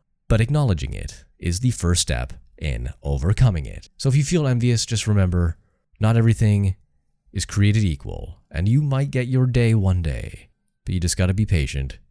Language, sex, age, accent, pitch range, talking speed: English, male, 30-49, American, 75-105 Hz, 185 wpm